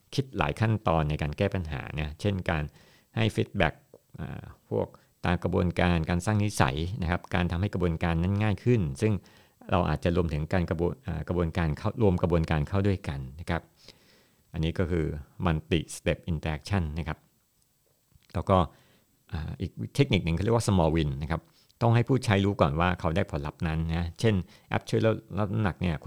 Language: Thai